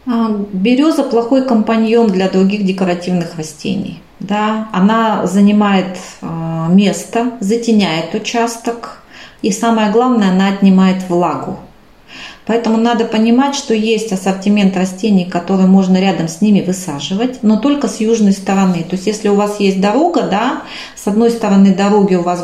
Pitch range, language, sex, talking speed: 185-230 Hz, Russian, female, 135 wpm